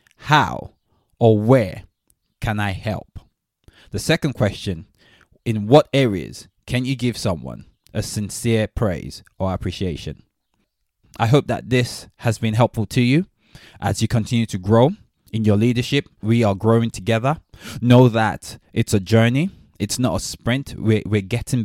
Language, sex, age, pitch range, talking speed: English, male, 20-39, 100-120 Hz, 150 wpm